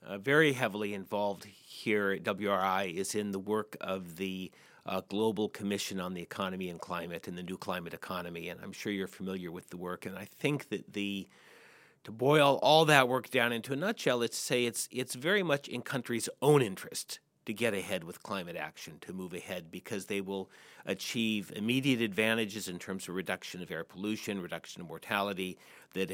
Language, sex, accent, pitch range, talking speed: English, male, American, 95-125 Hz, 195 wpm